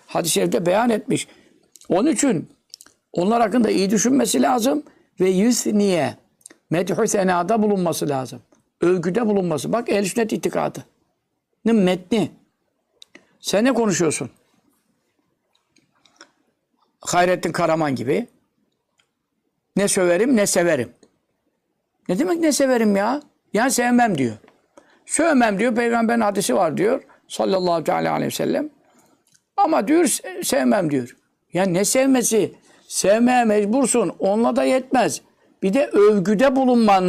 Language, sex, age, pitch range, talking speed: Turkish, male, 60-79, 190-260 Hz, 110 wpm